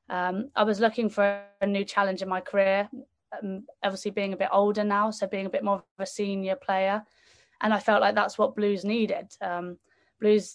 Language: English